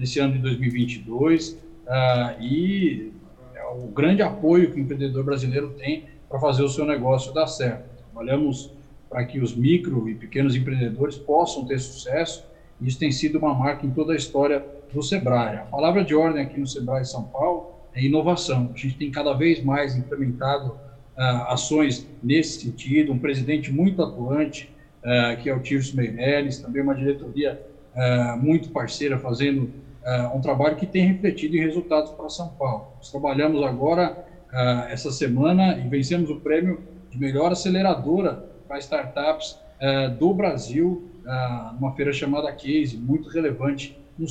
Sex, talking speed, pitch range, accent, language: male, 165 wpm, 135-160 Hz, Brazilian, English